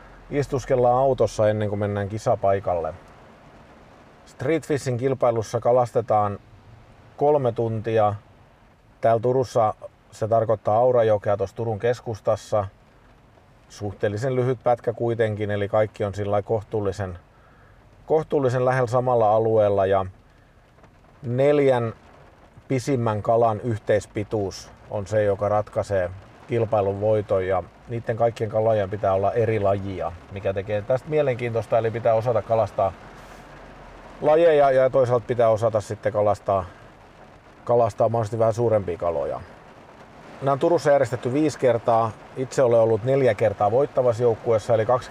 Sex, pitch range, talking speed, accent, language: male, 105-120 Hz, 115 wpm, native, Finnish